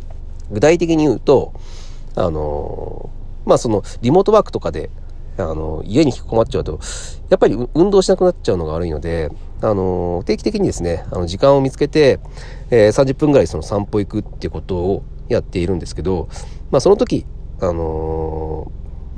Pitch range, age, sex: 80-135 Hz, 40-59, male